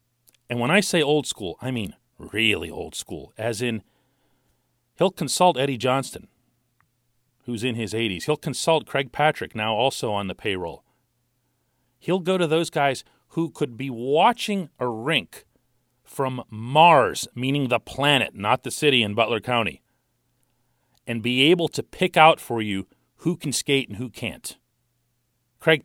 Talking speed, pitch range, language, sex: 155 wpm, 120-155 Hz, English, male